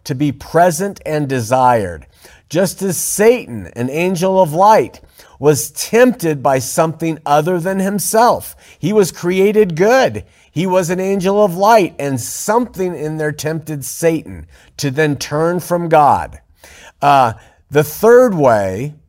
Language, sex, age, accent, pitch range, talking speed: English, male, 50-69, American, 120-180 Hz, 140 wpm